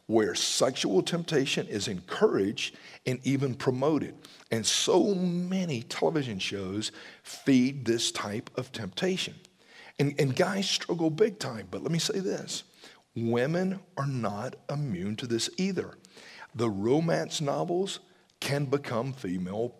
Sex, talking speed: male, 125 wpm